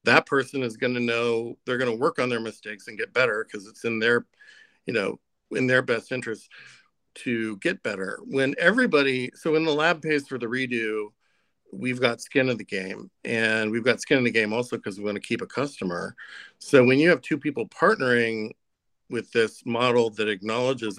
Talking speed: 205 wpm